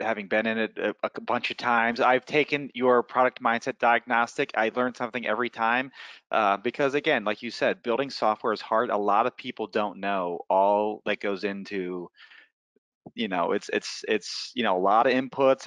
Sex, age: male, 30-49